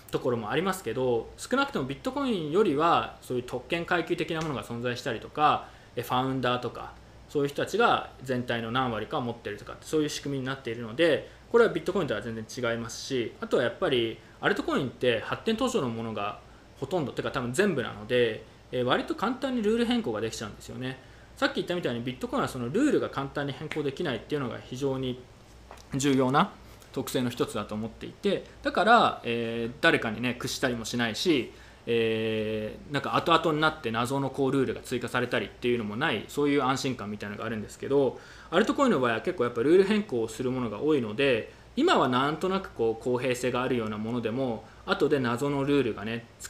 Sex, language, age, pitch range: male, Japanese, 20-39, 115-145 Hz